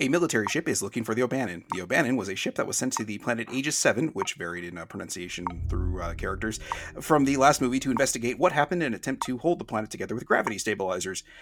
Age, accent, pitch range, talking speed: 30-49, American, 110-135 Hz, 245 wpm